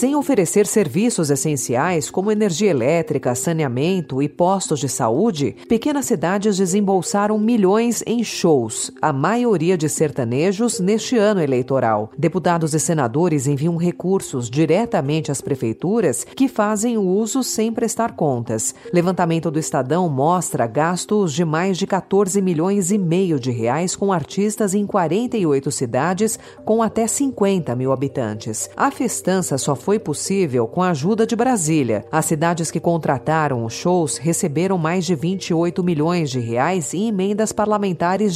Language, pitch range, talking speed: Portuguese, 145-205 Hz, 140 wpm